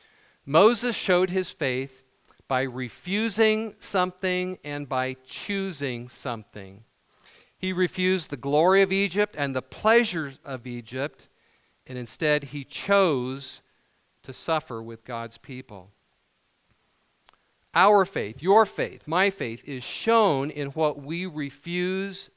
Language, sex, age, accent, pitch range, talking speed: English, male, 50-69, American, 130-185 Hz, 115 wpm